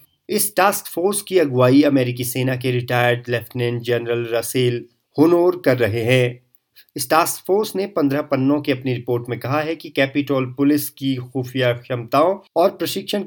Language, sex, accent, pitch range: Hindi, male, native, 115-145 Hz